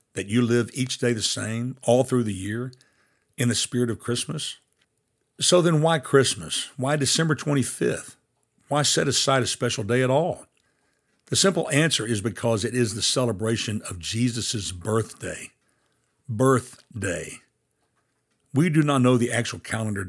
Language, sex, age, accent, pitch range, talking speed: English, male, 60-79, American, 110-130 Hz, 150 wpm